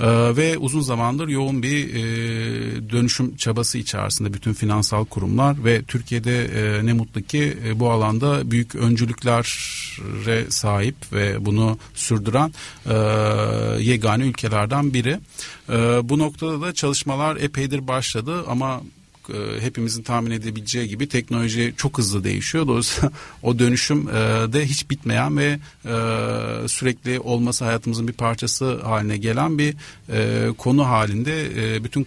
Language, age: Turkish, 40-59